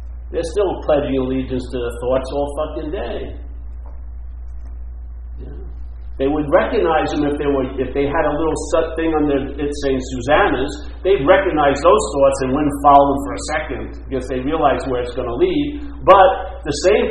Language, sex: English, male